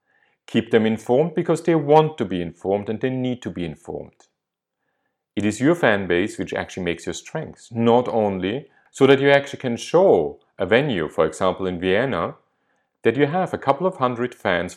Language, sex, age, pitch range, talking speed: English, male, 40-59, 90-135 Hz, 190 wpm